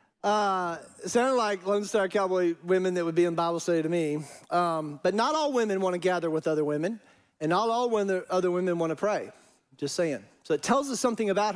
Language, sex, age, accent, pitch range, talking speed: English, male, 40-59, American, 160-195 Hz, 215 wpm